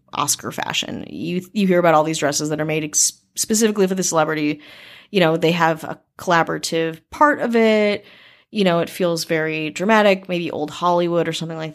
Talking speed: 195 wpm